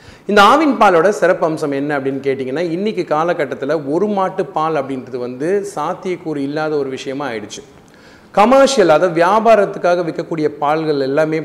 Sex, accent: male, native